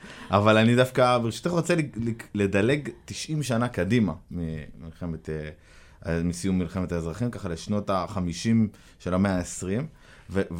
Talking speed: 115 wpm